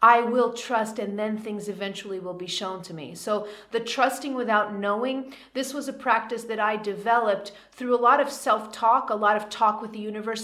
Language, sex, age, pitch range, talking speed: English, female, 30-49, 210-240 Hz, 205 wpm